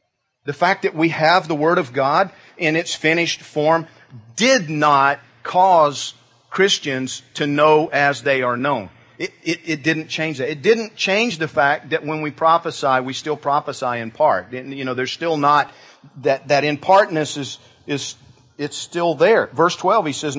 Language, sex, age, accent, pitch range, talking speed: English, male, 50-69, American, 130-170 Hz, 180 wpm